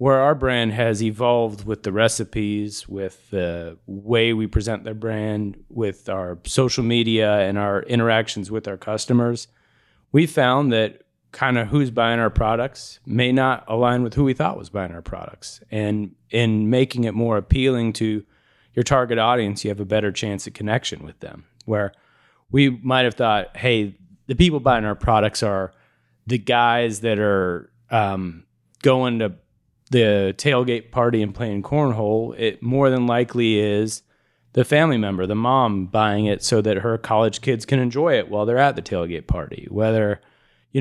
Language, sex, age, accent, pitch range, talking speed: English, male, 30-49, American, 105-120 Hz, 170 wpm